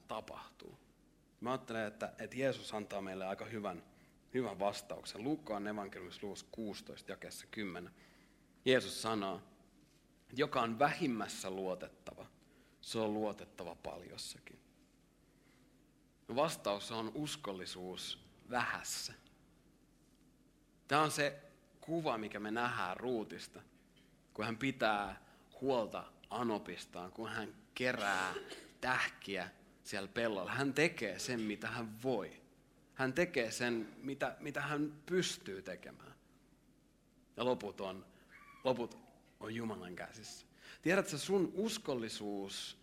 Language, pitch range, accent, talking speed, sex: Finnish, 100-135 Hz, native, 105 wpm, male